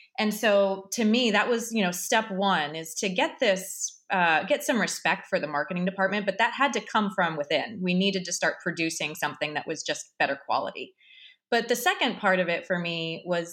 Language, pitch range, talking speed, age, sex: English, 185-255 Hz, 215 wpm, 20-39, female